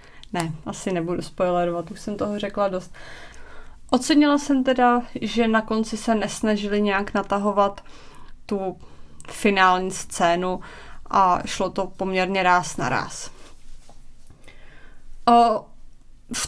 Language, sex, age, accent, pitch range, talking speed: Czech, female, 30-49, native, 195-245 Hz, 110 wpm